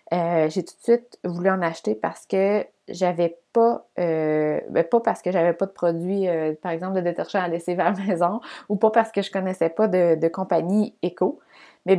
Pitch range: 180-225 Hz